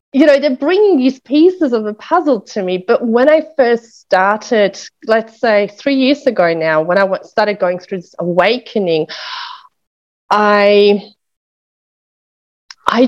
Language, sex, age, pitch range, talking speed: English, female, 30-49, 185-230 Hz, 140 wpm